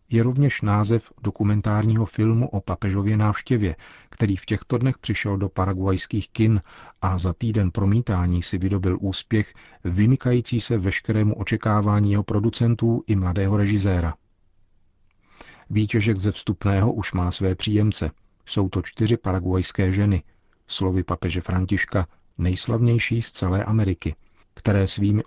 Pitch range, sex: 90-105 Hz, male